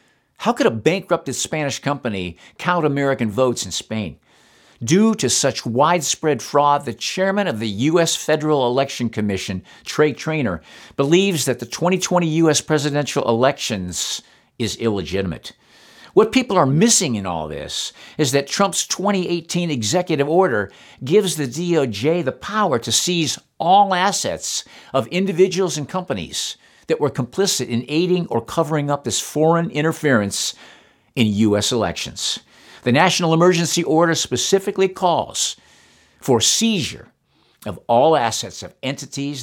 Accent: American